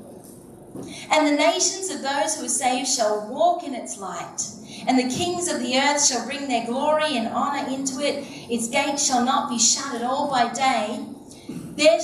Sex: female